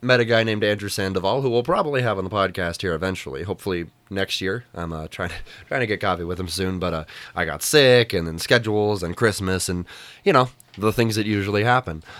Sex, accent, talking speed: male, American, 230 wpm